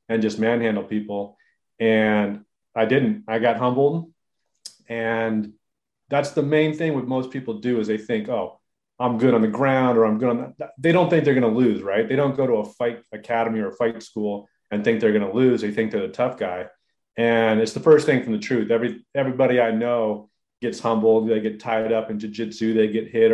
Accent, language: American, English